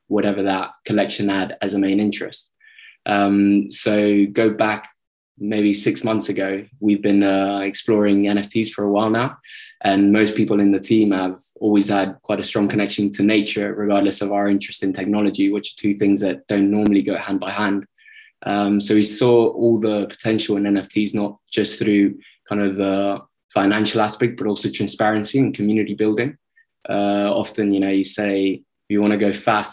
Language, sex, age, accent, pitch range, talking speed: English, male, 20-39, British, 100-105 Hz, 180 wpm